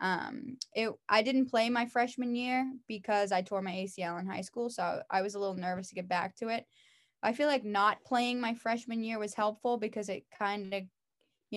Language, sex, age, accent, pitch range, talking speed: English, female, 10-29, American, 190-225 Hz, 220 wpm